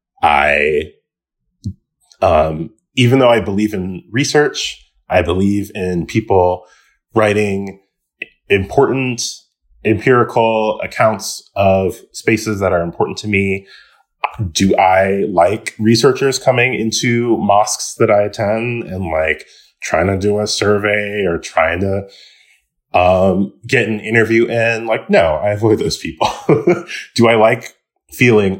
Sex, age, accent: male, 20-39, American